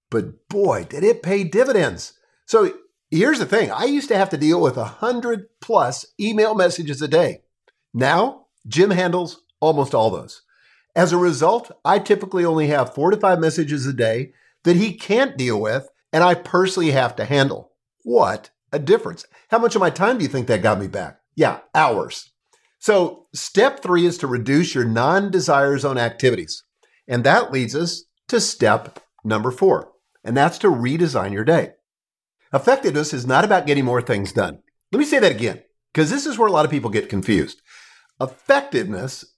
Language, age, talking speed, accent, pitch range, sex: English, 50-69, 180 wpm, American, 145-215 Hz, male